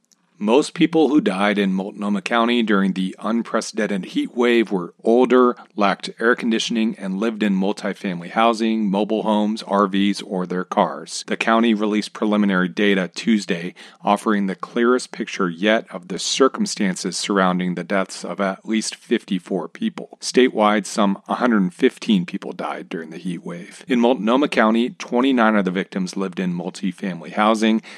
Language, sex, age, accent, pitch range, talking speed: English, male, 40-59, American, 95-125 Hz, 150 wpm